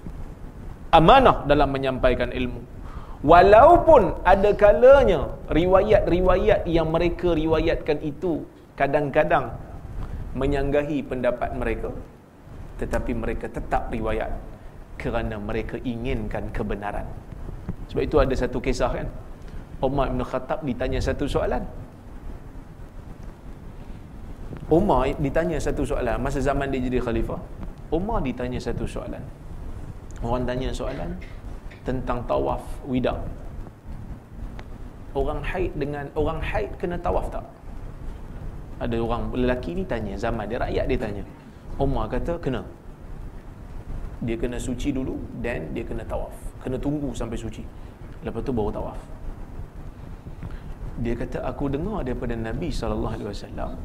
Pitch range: 110-140 Hz